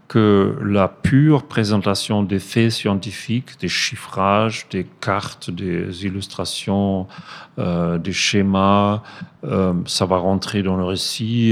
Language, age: French, 40-59